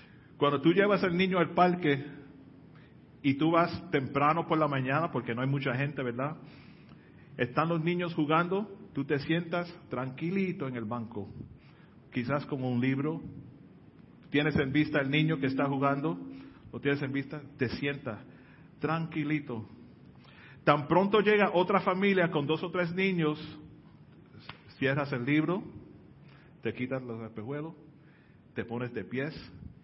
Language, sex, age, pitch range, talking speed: Spanish, male, 40-59, 140-180 Hz, 145 wpm